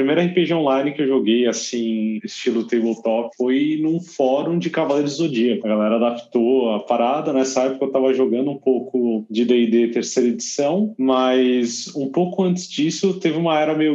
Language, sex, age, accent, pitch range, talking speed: Portuguese, male, 20-39, Brazilian, 120-170 Hz, 175 wpm